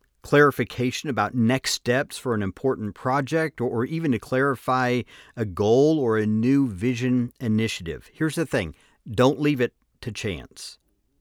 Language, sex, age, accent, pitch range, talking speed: English, male, 50-69, American, 100-135 Hz, 145 wpm